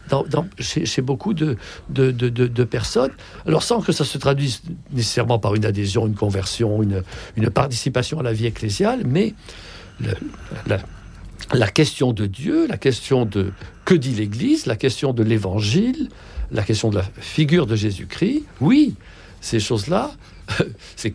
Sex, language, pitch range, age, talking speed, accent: male, French, 105-155 Hz, 60-79, 165 wpm, French